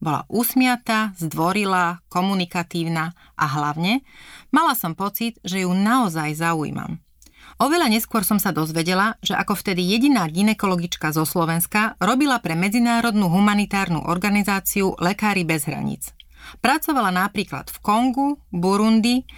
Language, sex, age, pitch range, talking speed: Slovak, female, 30-49, 170-215 Hz, 120 wpm